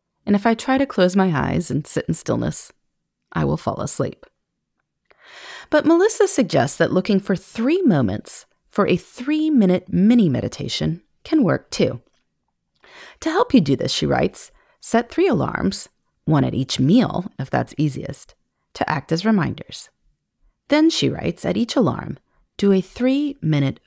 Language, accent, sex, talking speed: English, American, female, 155 wpm